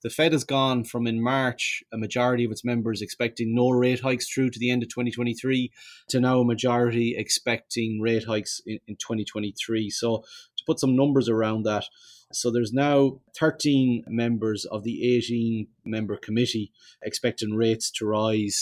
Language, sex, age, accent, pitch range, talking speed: English, male, 30-49, Irish, 110-130 Hz, 170 wpm